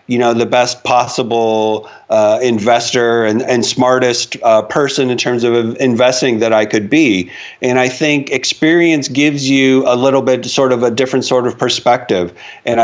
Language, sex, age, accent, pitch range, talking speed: English, male, 40-59, American, 115-130 Hz, 175 wpm